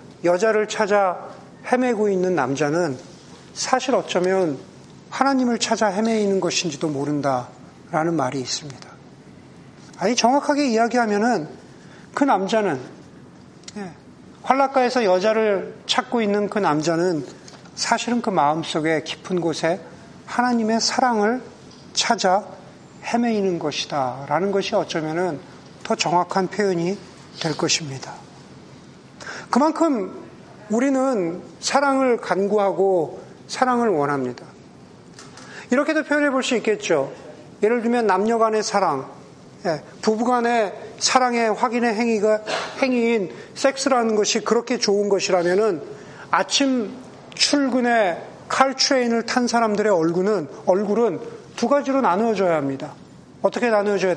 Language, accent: Korean, native